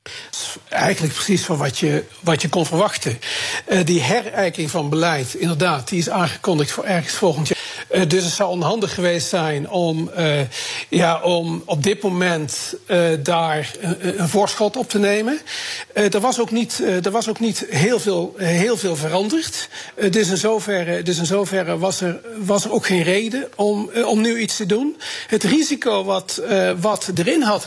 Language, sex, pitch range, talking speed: Dutch, male, 175-220 Hz, 190 wpm